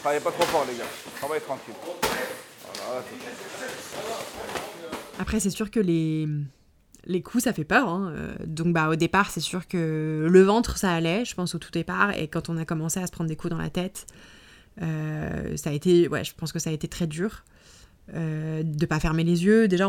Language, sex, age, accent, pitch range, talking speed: French, female, 20-39, French, 155-185 Hz, 215 wpm